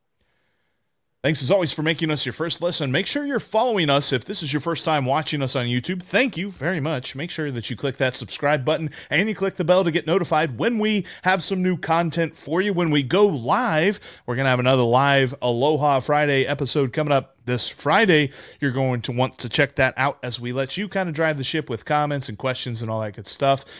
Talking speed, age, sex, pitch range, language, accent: 240 wpm, 30-49, male, 125-175 Hz, English, American